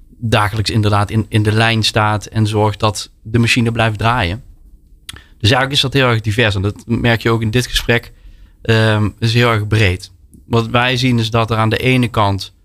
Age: 20-39